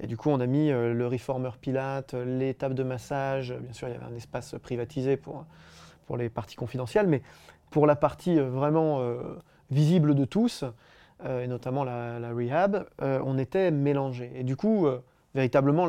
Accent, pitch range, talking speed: French, 130-155 Hz, 190 wpm